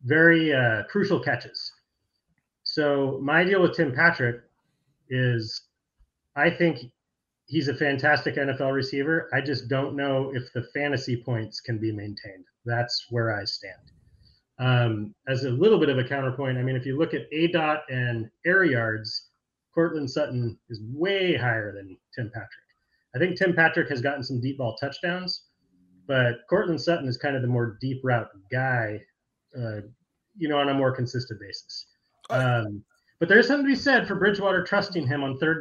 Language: English